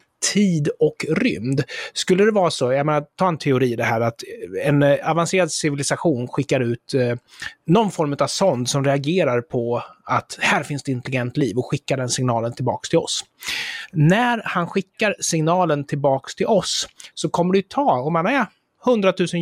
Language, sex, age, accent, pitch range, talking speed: Swedish, male, 30-49, native, 135-185 Hz, 175 wpm